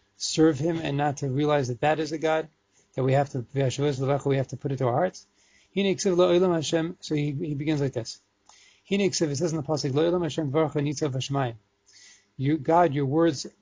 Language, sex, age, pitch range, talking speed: English, male, 30-49, 135-165 Hz, 165 wpm